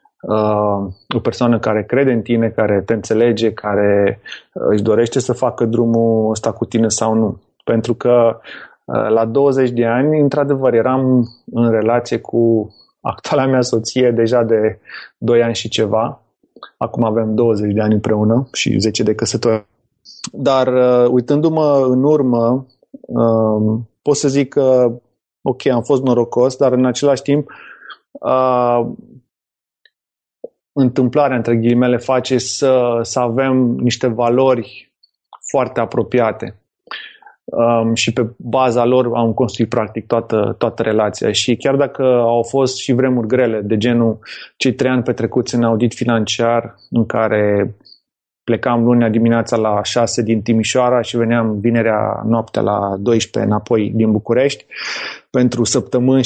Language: Romanian